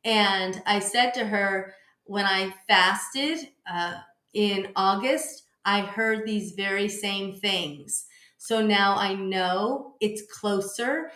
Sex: female